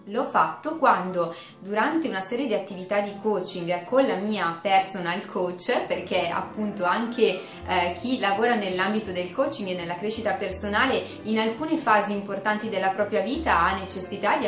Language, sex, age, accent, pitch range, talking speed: Italian, female, 20-39, native, 185-225 Hz, 160 wpm